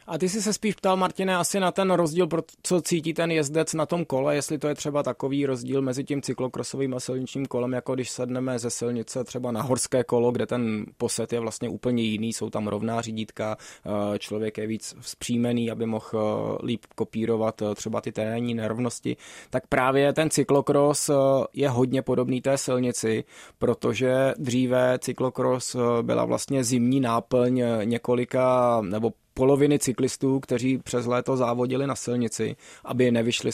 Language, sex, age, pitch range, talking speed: Czech, male, 20-39, 115-135 Hz, 165 wpm